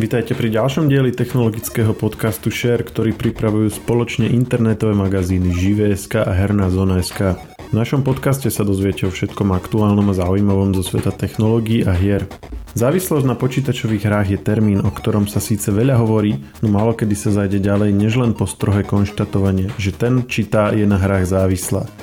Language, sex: Slovak, male